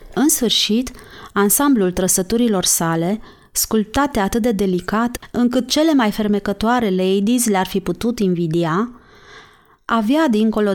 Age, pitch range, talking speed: 30-49, 185-230 Hz, 110 wpm